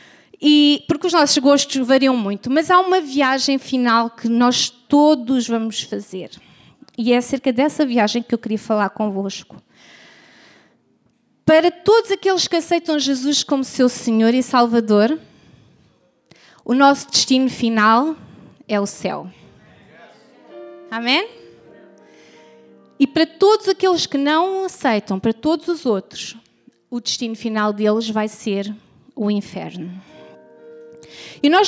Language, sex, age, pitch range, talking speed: Portuguese, female, 20-39, 215-300 Hz, 125 wpm